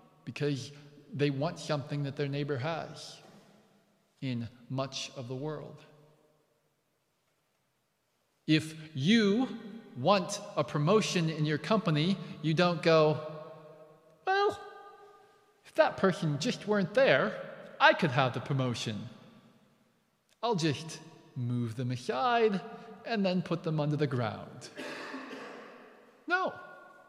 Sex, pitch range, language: male, 140-200 Hz, English